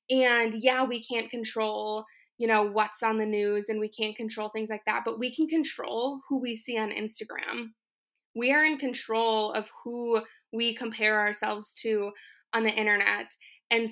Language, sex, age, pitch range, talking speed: English, female, 20-39, 220-275 Hz, 175 wpm